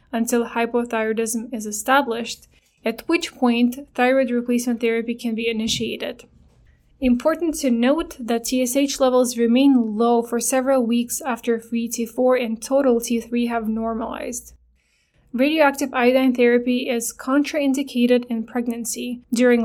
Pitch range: 235-265 Hz